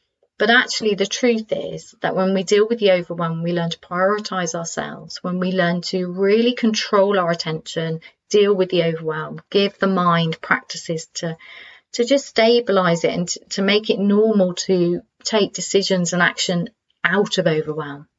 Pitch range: 175-215 Hz